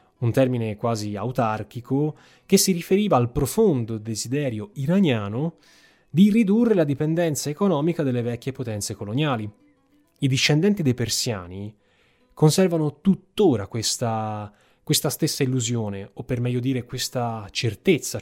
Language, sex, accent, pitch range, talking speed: Italian, male, native, 120-160 Hz, 120 wpm